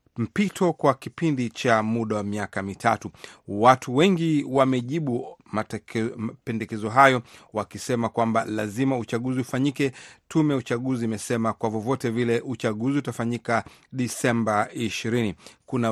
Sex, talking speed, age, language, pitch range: male, 110 wpm, 40-59, Swahili, 115-135 Hz